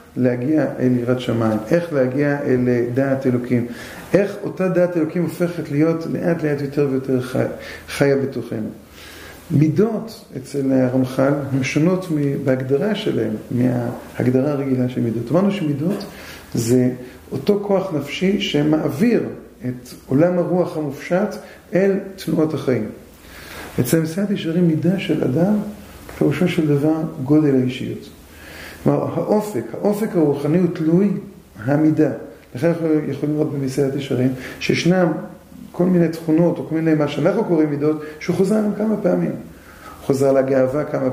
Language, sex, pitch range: Hebrew, male, 130-175 Hz